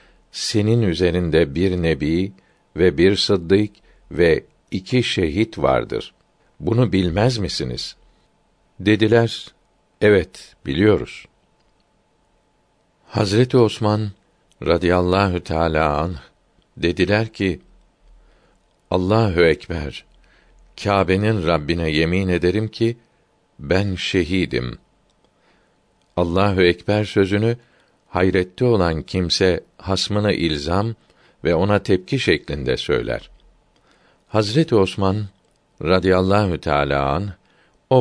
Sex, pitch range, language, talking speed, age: male, 85-105 Hz, Turkish, 80 wpm, 60-79